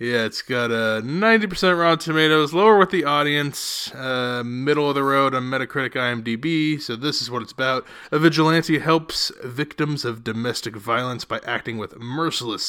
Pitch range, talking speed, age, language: 115-155 Hz, 170 wpm, 20-39, English